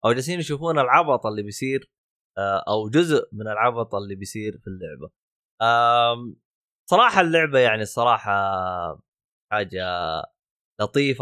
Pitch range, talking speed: 100-130 Hz, 105 wpm